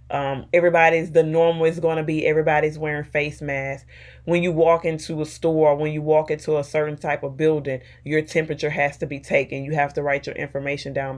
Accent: American